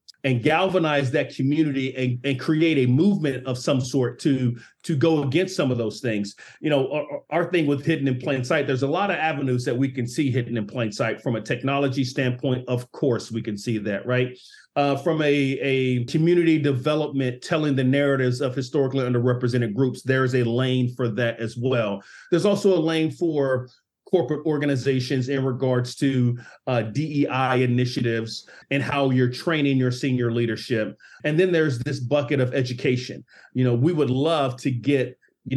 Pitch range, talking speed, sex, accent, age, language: 125-145 Hz, 185 wpm, male, American, 40-59, English